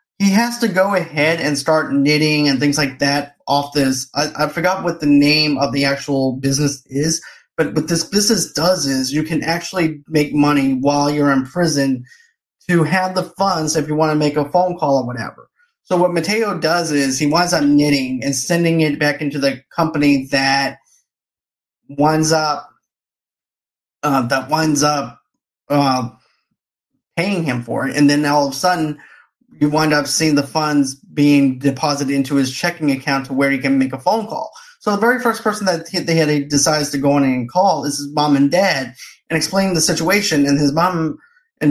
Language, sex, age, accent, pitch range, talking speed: English, male, 30-49, American, 140-175 Hz, 195 wpm